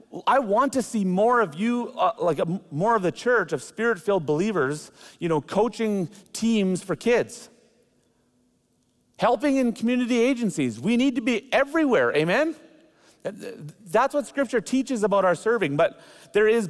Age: 40-59